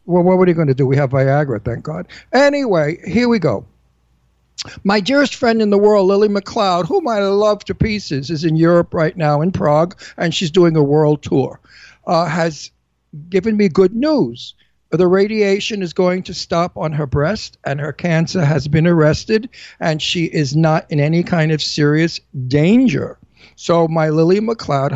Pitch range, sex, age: 145-185 Hz, male, 60-79